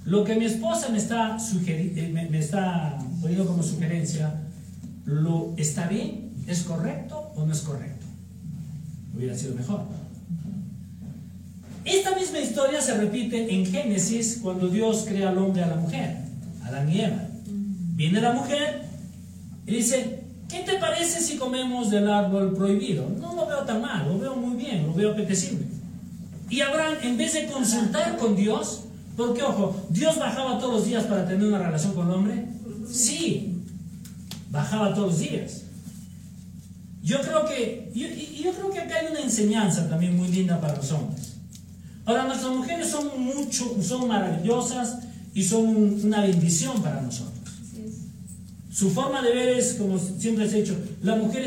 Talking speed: 160 wpm